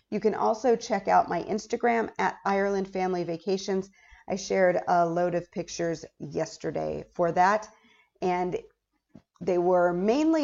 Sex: female